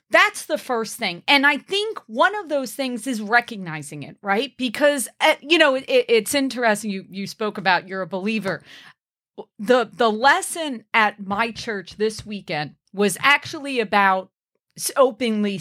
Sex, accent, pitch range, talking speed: female, American, 205-290 Hz, 160 wpm